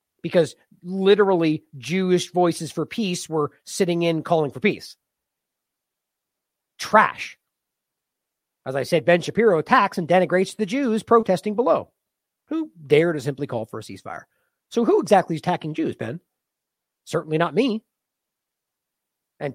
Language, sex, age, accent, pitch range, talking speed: English, male, 40-59, American, 150-205 Hz, 135 wpm